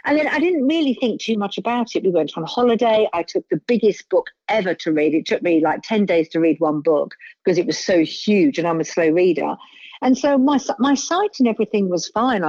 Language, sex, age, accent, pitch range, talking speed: English, female, 50-69, British, 165-230 Hz, 245 wpm